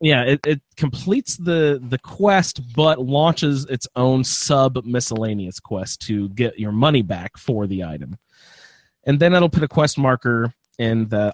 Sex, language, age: male, English, 30-49